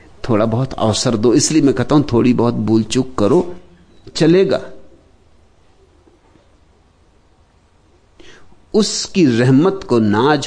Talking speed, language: 105 wpm, Hindi